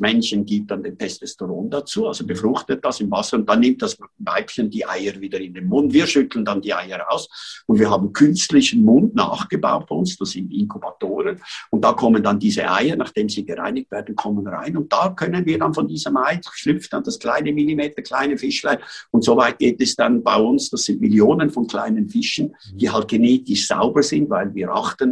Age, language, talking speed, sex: 50-69, German, 210 wpm, male